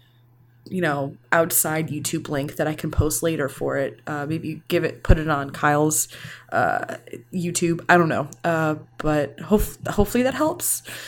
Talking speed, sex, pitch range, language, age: 170 wpm, female, 155-210 Hz, English, 20-39